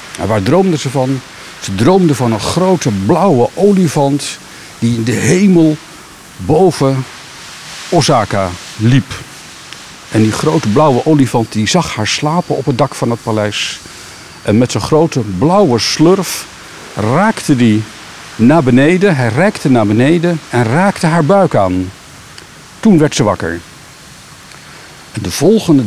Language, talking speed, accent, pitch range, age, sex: Dutch, 135 wpm, Dutch, 115-165 Hz, 60-79, male